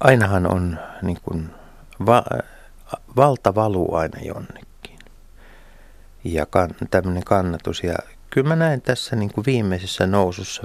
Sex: male